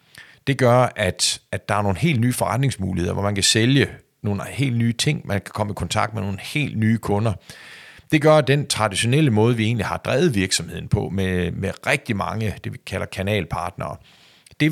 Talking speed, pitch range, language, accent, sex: 200 wpm, 95-125 Hz, Danish, native, male